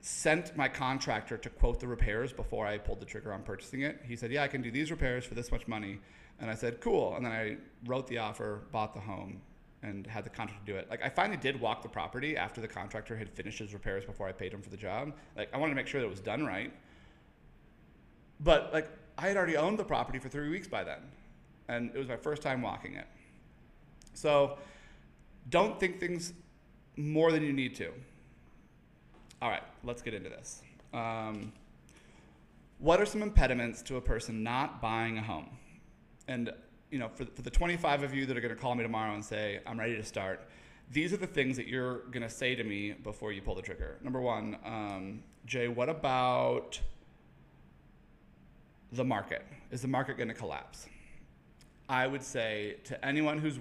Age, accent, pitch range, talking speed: 30-49, American, 105-135 Hz, 205 wpm